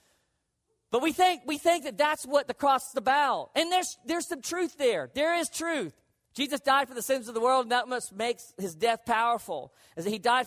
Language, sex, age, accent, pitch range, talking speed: English, male, 40-59, American, 230-310 Hz, 230 wpm